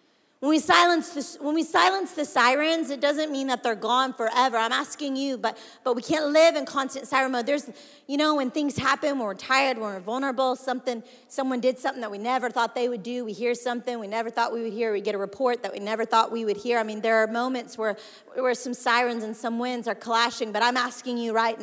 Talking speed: 250 wpm